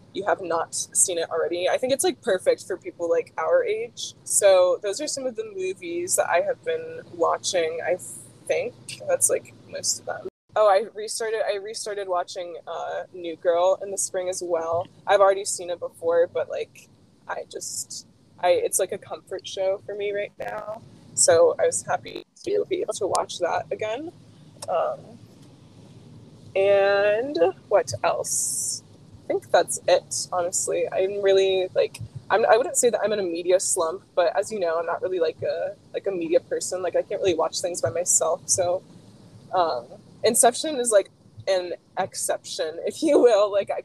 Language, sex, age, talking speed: English, female, 20-39, 180 wpm